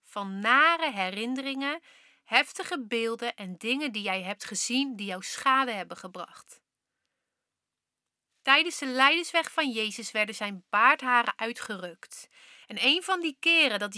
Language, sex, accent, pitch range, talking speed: Dutch, female, Dutch, 220-310 Hz, 135 wpm